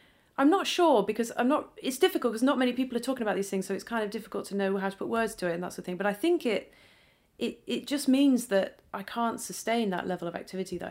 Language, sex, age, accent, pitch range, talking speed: English, female, 30-49, British, 165-260 Hz, 285 wpm